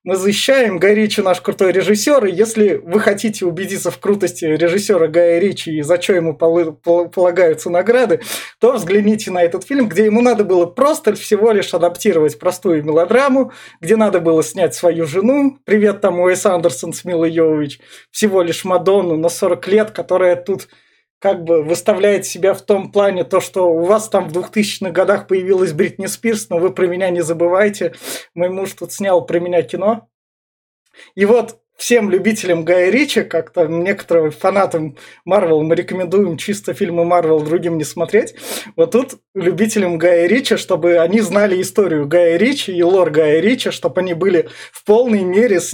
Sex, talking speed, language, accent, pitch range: male, 170 wpm, Russian, native, 170-210 Hz